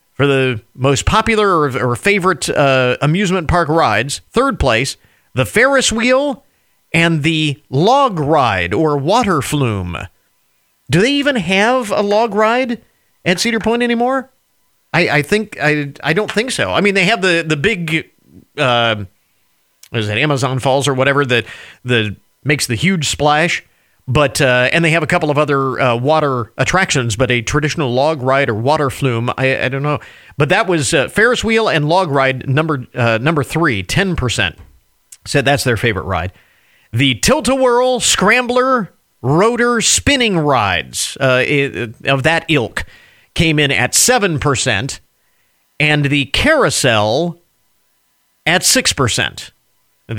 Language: English